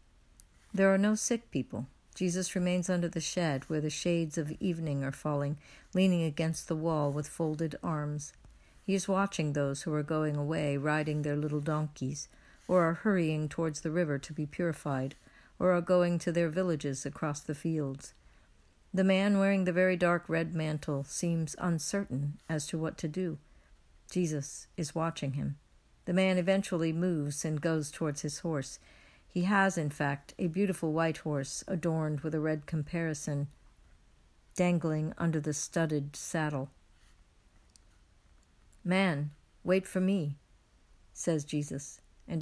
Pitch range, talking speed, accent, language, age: 145-180 Hz, 150 wpm, American, English, 60-79